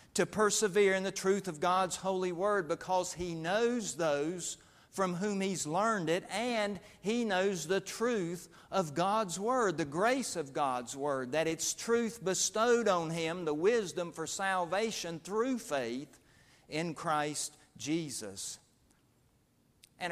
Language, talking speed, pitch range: English, 140 wpm, 160-210 Hz